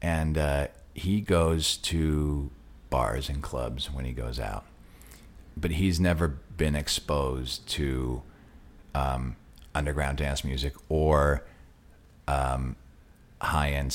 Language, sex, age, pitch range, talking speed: English, male, 50-69, 70-90 Hz, 110 wpm